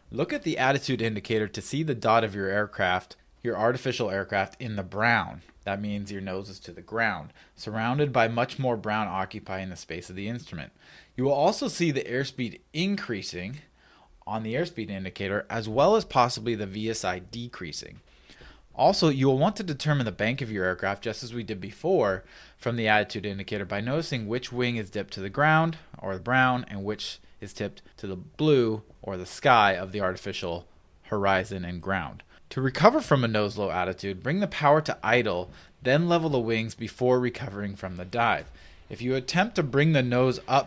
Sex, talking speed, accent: male, 195 wpm, American